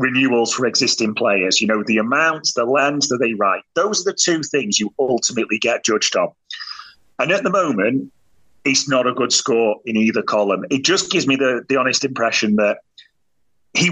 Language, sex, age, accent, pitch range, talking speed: English, male, 30-49, British, 115-165 Hz, 195 wpm